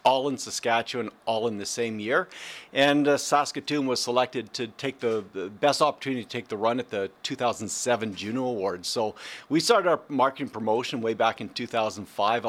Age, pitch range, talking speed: 50-69, 120-145 Hz, 185 wpm